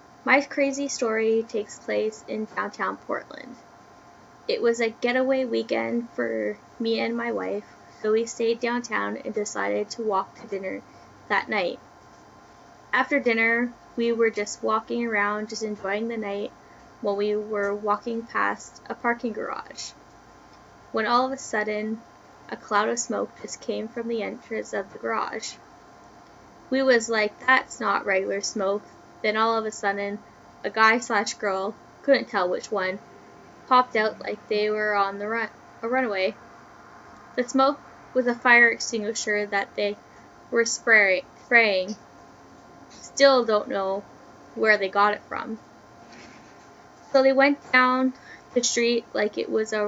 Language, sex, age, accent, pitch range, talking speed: English, female, 10-29, American, 205-235 Hz, 150 wpm